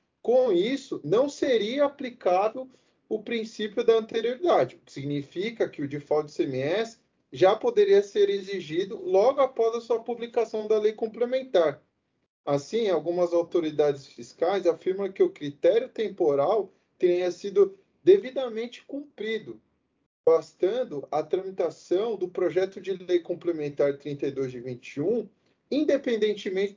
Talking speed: 120 wpm